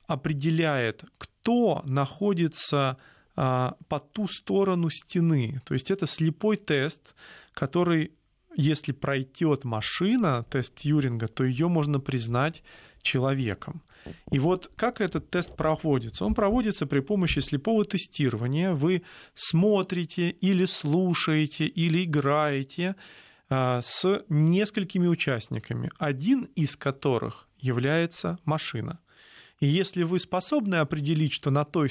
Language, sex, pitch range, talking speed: Russian, male, 135-175 Hz, 105 wpm